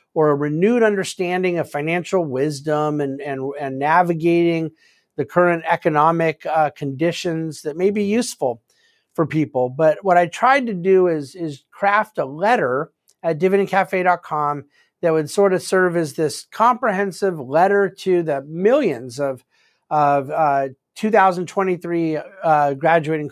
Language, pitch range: English, 150-185 Hz